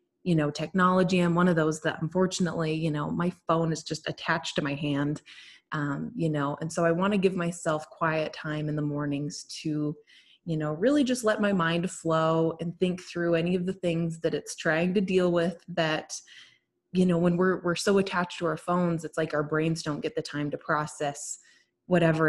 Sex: female